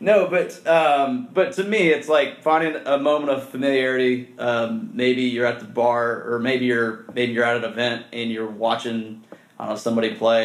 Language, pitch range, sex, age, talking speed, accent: English, 115-135 Hz, male, 30-49, 200 wpm, American